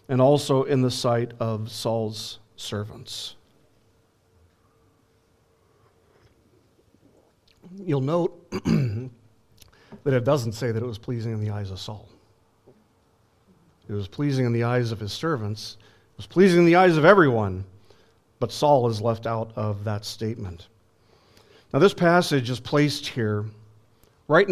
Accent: American